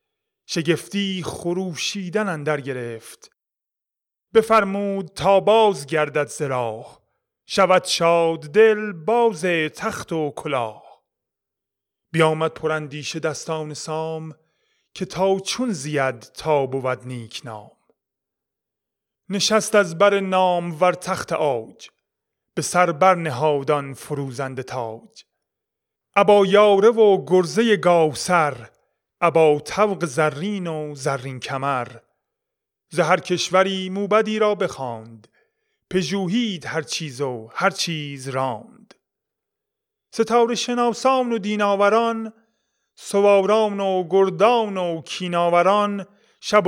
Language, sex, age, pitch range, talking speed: Persian, male, 30-49, 150-205 Hz, 95 wpm